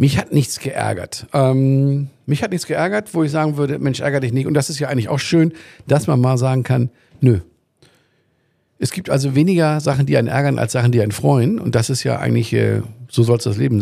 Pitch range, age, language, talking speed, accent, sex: 115-145 Hz, 50-69, German, 235 wpm, German, male